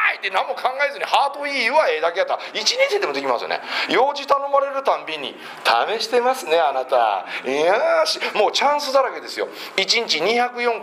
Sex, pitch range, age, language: male, 155-230 Hz, 40-59, Japanese